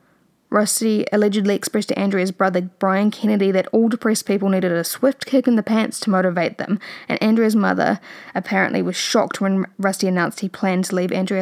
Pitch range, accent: 190-225 Hz, Australian